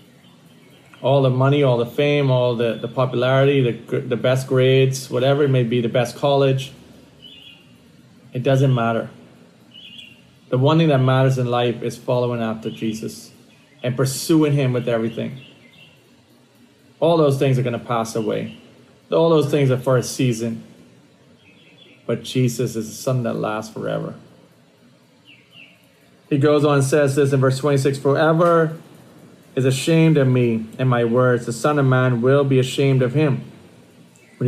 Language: English